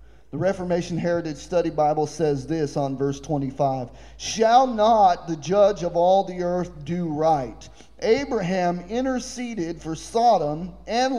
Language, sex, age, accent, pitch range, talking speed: English, male, 40-59, American, 140-200 Hz, 135 wpm